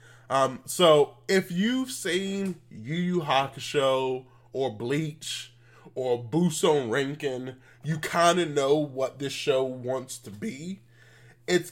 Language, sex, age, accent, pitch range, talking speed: English, male, 20-39, American, 120-165 Hz, 125 wpm